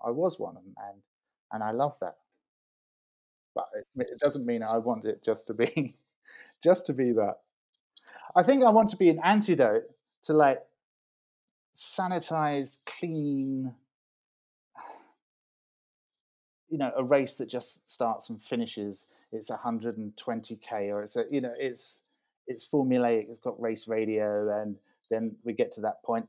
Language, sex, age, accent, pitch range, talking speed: English, male, 30-49, British, 115-170 Hz, 160 wpm